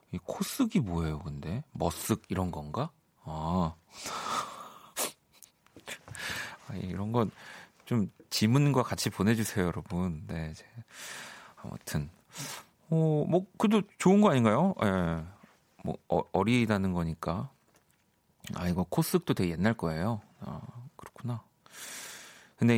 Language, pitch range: Korean, 90-140 Hz